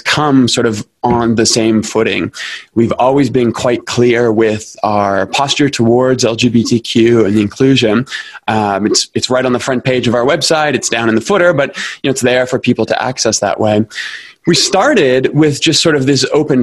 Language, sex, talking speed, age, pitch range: English, male, 200 wpm, 20-39, 115-140 Hz